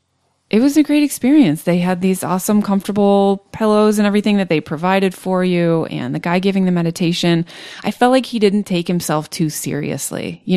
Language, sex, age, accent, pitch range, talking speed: English, female, 20-39, American, 155-195 Hz, 195 wpm